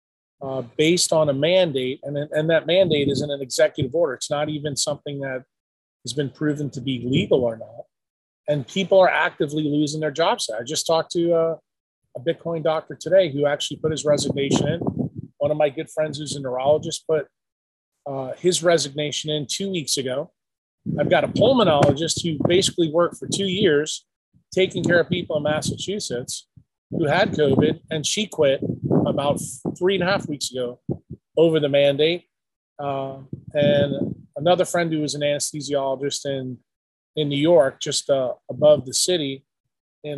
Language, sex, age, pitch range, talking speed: English, male, 30-49, 140-165 Hz, 170 wpm